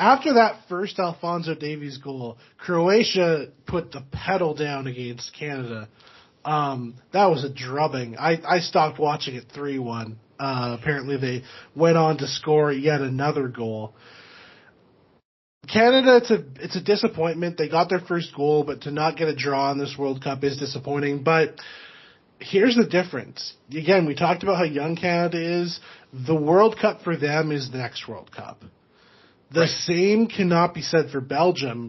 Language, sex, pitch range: English, male, 140-175 Hz